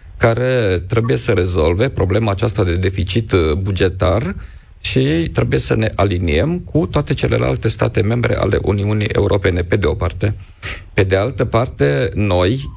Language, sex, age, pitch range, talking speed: Romanian, male, 40-59, 95-115 Hz, 145 wpm